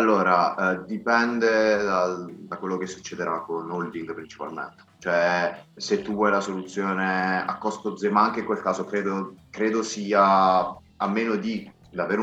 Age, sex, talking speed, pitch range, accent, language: 20-39, male, 155 wpm, 90-105 Hz, native, Italian